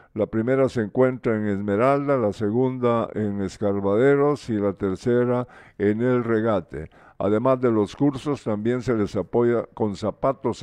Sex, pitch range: male, 110-140 Hz